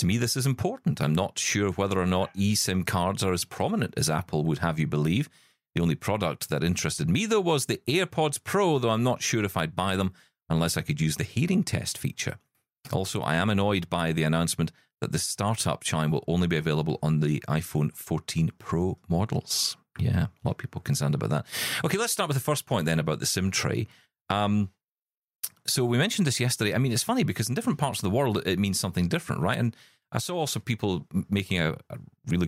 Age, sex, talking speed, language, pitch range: 40-59, male, 225 wpm, English, 80-115 Hz